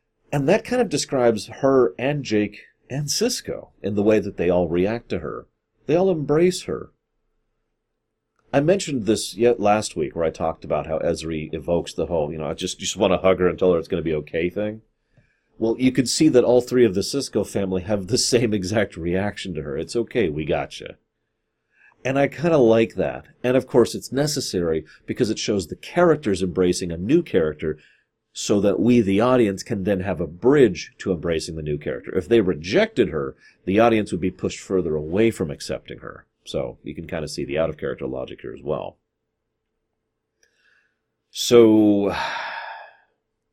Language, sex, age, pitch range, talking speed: English, male, 40-59, 90-120 Hz, 190 wpm